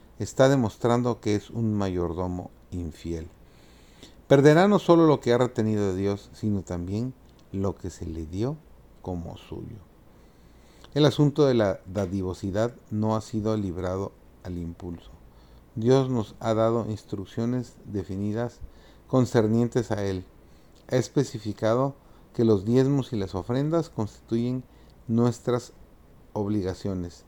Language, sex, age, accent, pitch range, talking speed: Spanish, male, 40-59, Mexican, 90-120 Hz, 125 wpm